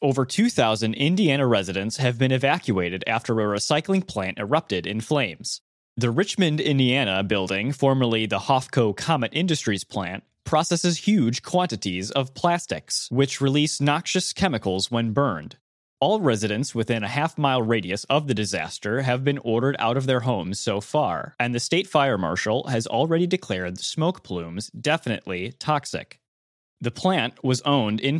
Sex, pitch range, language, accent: male, 105-150 Hz, English, American